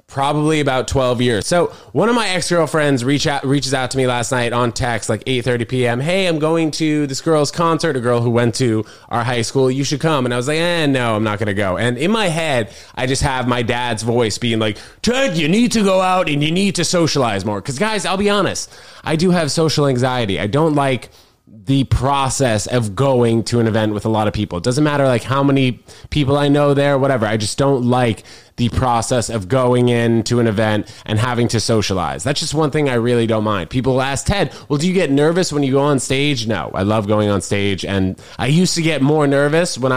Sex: male